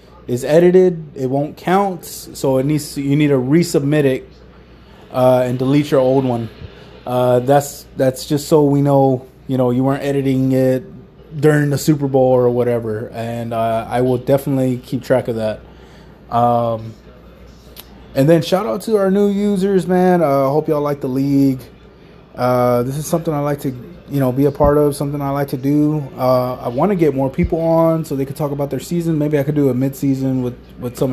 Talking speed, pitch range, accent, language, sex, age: 200 wpm, 125-150 Hz, American, English, male, 20-39